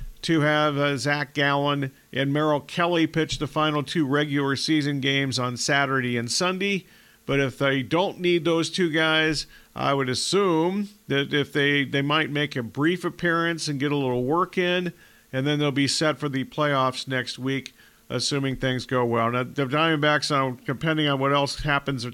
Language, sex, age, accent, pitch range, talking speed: English, male, 50-69, American, 135-155 Hz, 180 wpm